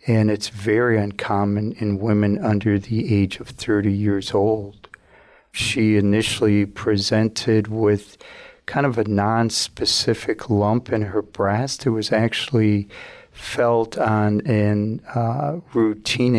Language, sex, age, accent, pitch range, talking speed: English, male, 50-69, American, 105-115 Hz, 115 wpm